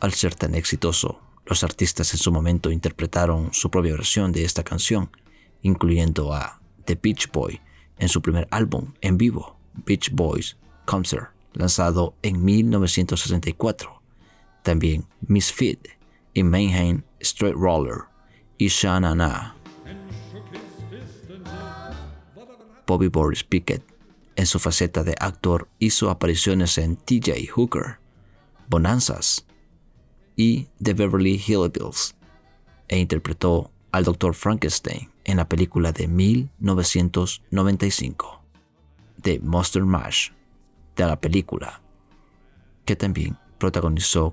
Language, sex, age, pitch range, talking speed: Spanish, male, 40-59, 80-95 Hz, 105 wpm